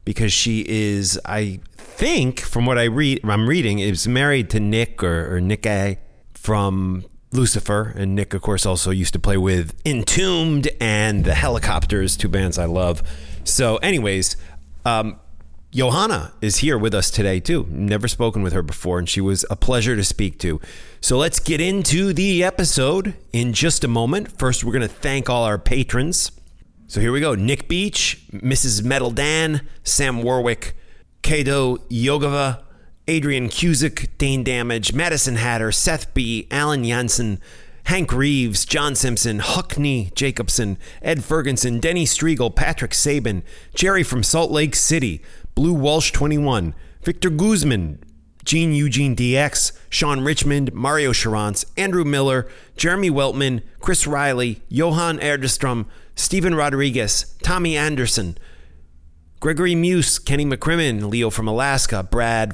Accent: American